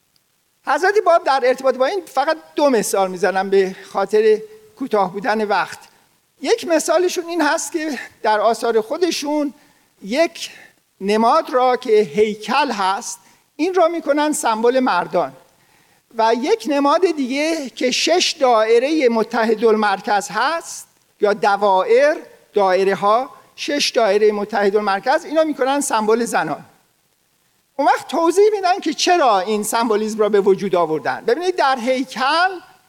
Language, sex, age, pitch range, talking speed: Persian, male, 50-69, 205-310 Hz, 125 wpm